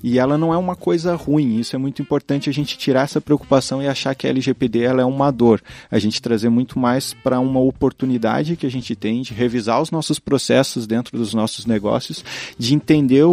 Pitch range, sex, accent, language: 115-140 Hz, male, Brazilian, Portuguese